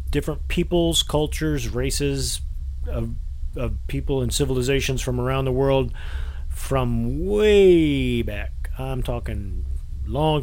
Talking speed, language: 110 wpm, English